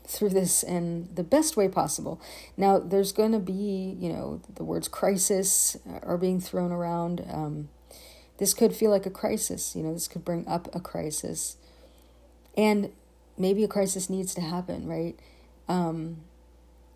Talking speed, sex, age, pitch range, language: 160 wpm, female, 40-59, 165-195 Hz, English